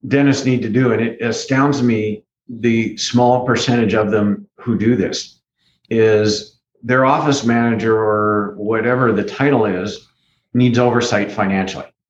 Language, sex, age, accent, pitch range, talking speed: English, male, 50-69, American, 105-125 Hz, 140 wpm